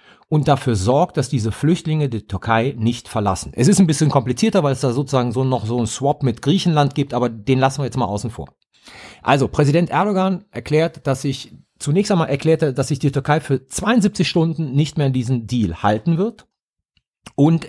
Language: German